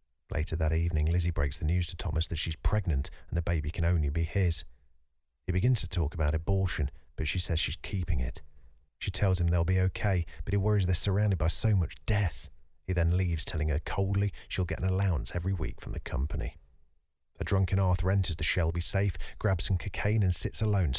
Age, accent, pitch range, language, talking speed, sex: 40-59, British, 75-100 Hz, English, 210 wpm, male